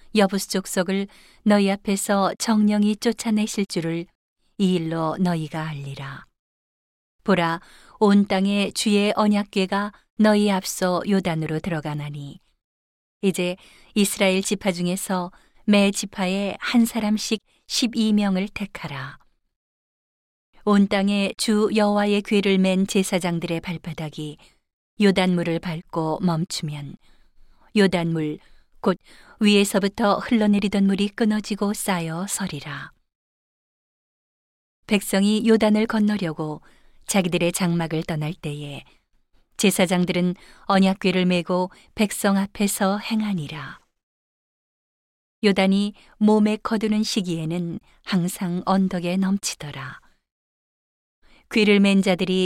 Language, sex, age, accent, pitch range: Korean, female, 40-59, native, 175-210 Hz